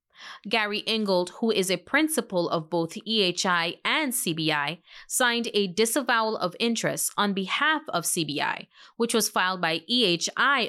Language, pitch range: English, 175-230 Hz